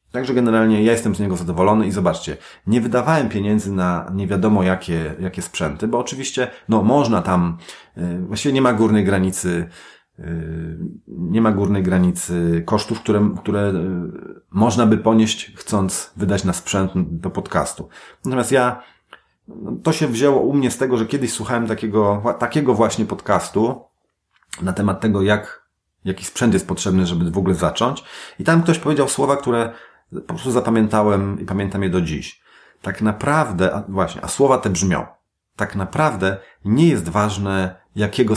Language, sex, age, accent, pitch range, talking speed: Polish, male, 30-49, native, 90-115 Hz, 155 wpm